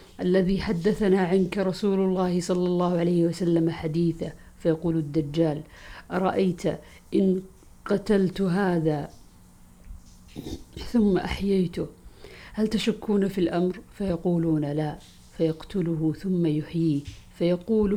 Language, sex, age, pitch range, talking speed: Arabic, female, 50-69, 155-185 Hz, 95 wpm